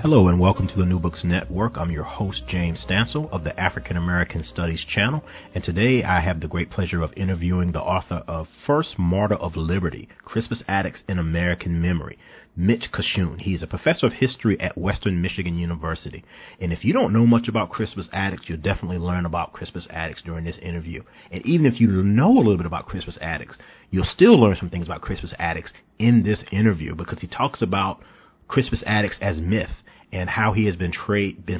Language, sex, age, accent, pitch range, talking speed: English, male, 40-59, American, 90-110 Hz, 200 wpm